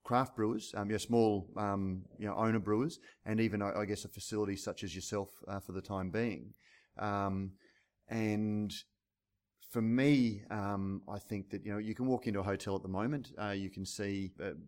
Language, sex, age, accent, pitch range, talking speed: English, male, 30-49, Australian, 95-115 Hz, 205 wpm